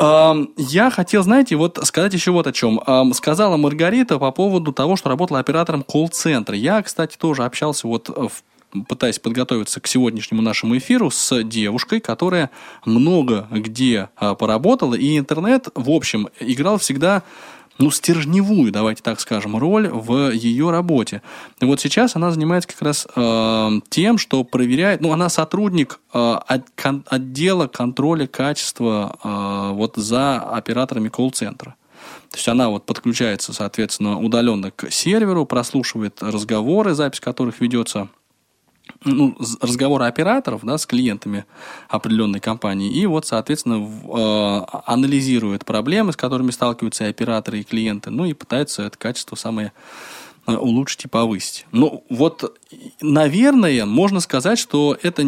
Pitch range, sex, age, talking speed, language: 110-165 Hz, male, 20-39, 135 wpm, Russian